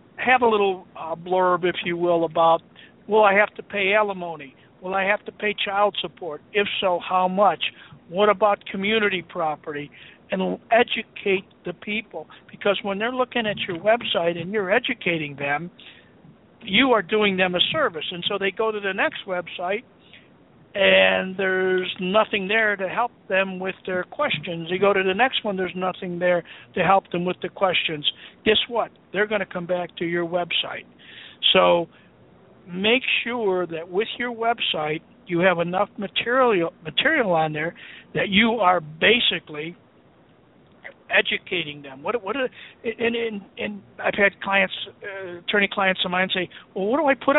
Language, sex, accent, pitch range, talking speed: English, male, American, 175-210 Hz, 170 wpm